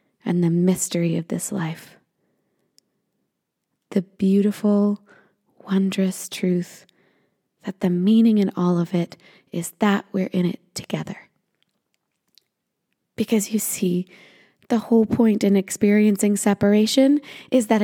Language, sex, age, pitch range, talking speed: English, female, 20-39, 185-225 Hz, 115 wpm